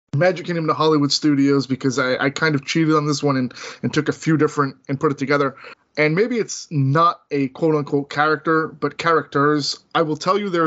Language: English